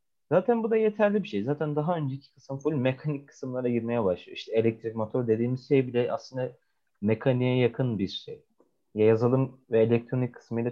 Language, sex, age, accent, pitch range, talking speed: Turkish, male, 30-49, native, 120-165 Hz, 175 wpm